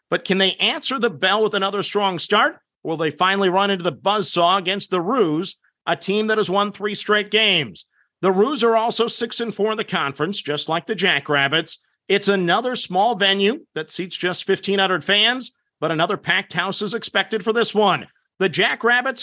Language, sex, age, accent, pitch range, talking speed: English, male, 50-69, American, 180-225 Hz, 195 wpm